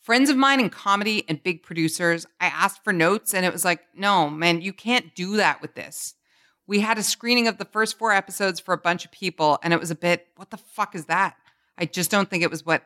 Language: English